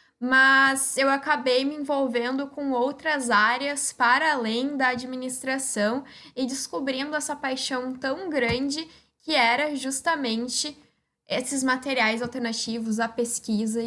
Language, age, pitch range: Portuguese, 10-29, 230-275 Hz